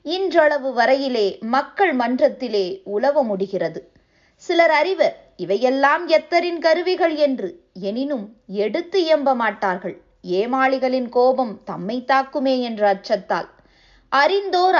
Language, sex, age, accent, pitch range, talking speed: Tamil, female, 20-39, native, 210-300 Hz, 95 wpm